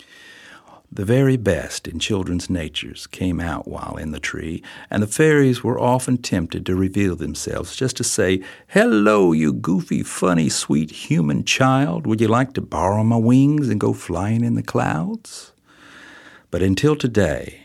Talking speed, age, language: 160 wpm, 60-79, English